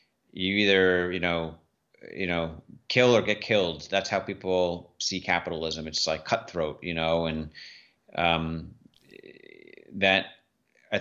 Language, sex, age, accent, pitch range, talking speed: English, male, 30-49, American, 85-95 Hz, 130 wpm